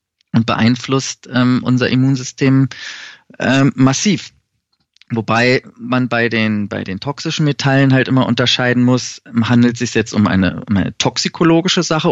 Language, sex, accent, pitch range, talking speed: German, male, German, 110-130 Hz, 145 wpm